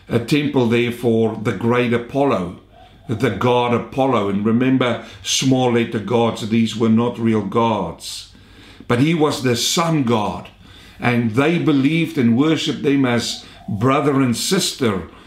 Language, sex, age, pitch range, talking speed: English, male, 50-69, 100-140 Hz, 140 wpm